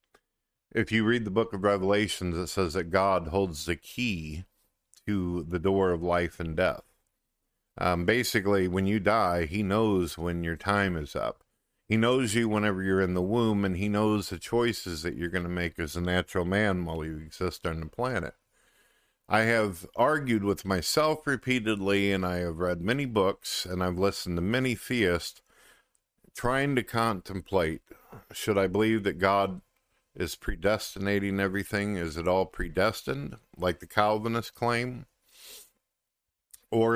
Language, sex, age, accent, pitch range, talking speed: English, male, 50-69, American, 90-110 Hz, 160 wpm